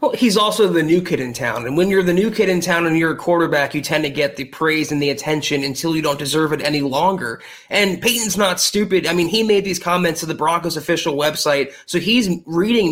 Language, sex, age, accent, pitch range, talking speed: English, male, 20-39, American, 155-190 Hz, 250 wpm